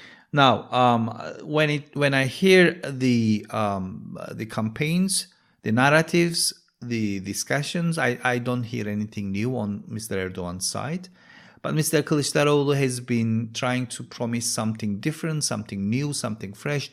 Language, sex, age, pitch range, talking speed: English, male, 50-69, 100-135 Hz, 140 wpm